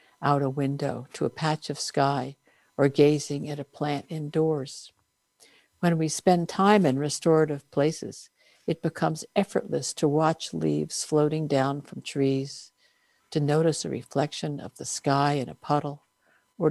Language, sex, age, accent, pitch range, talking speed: English, female, 60-79, American, 140-165 Hz, 150 wpm